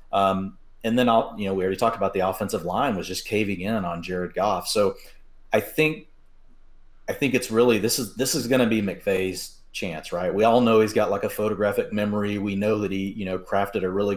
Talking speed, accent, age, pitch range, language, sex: 235 wpm, American, 40-59, 95-115 Hz, English, male